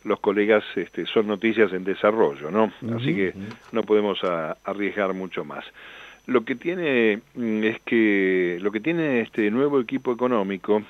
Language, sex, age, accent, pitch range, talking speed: Spanish, male, 50-69, Argentinian, 100-120 Hz, 155 wpm